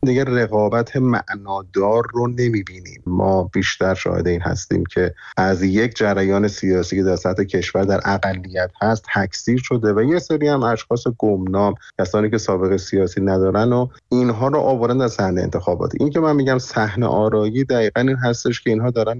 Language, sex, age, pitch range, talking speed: Persian, male, 30-49, 95-120 Hz, 170 wpm